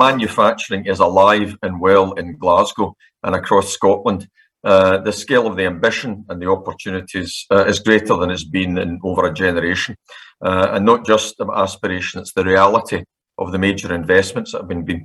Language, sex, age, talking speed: English, male, 50-69, 185 wpm